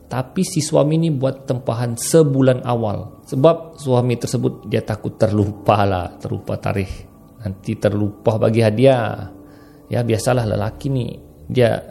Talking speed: 130 wpm